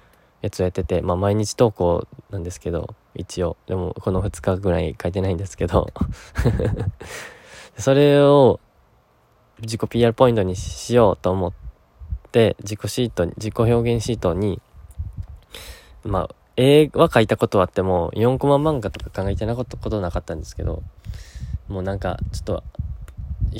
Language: Japanese